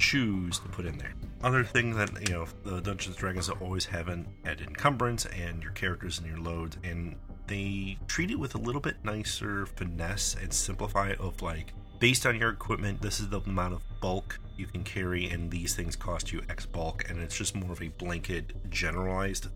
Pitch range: 85-100 Hz